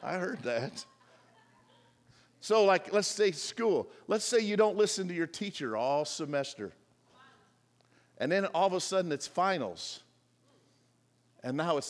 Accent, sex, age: American, male, 50-69